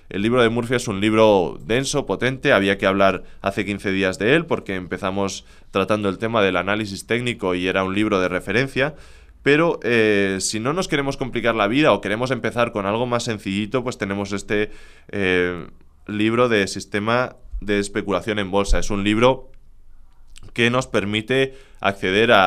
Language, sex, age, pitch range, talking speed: English, male, 20-39, 95-115 Hz, 175 wpm